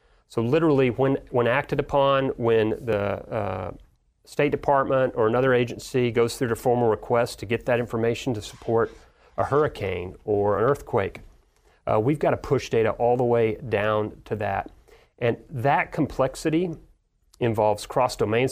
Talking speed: 150 wpm